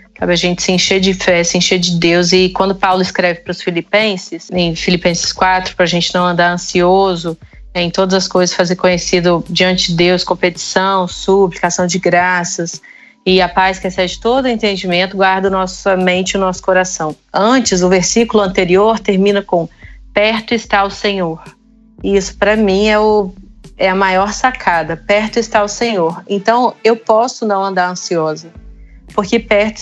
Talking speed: 175 wpm